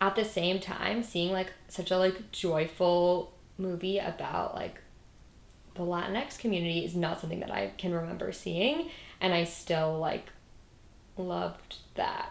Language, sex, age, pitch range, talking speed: English, female, 20-39, 170-205 Hz, 145 wpm